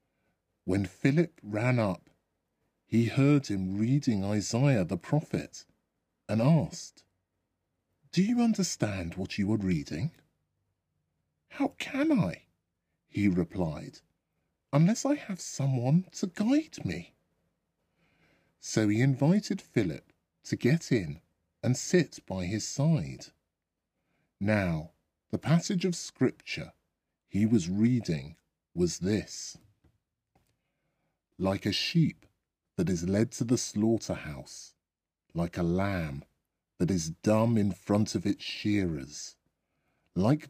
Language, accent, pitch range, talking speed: English, British, 95-140 Hz, 110 wpm